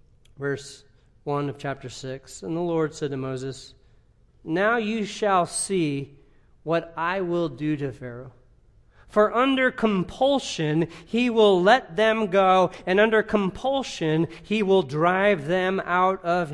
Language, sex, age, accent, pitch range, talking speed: English, male, 40-59, American, 140-195 Hz, 140 wpm